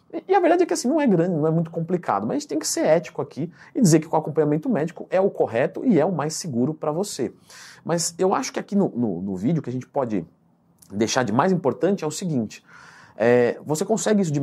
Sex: male